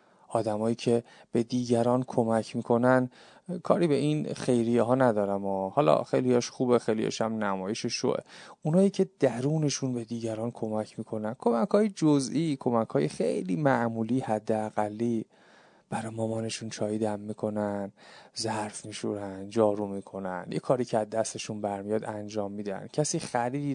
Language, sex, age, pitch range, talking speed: Persian, male, 30-49, 110-130 Hz, 135 wpm